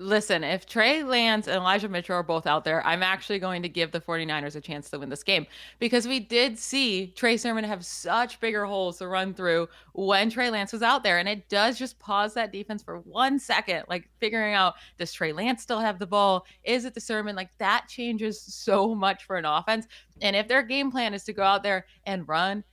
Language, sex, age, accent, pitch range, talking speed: English, female, 20-39, American, 175-220 Hz, 230 wpm